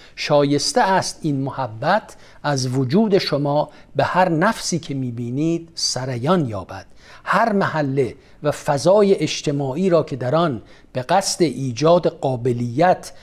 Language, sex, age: Persian, male, 50-69